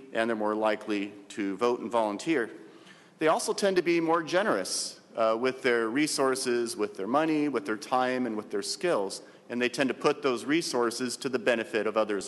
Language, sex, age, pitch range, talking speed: English, male, 40-59, 115-155 Hz, 200 wpm